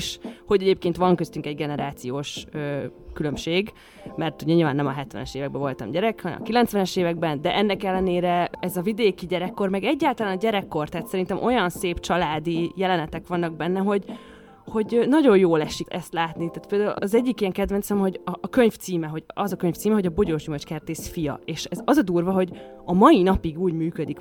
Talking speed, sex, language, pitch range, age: 190 wpm, female, Hungarian, 165-210 Hz, 20-39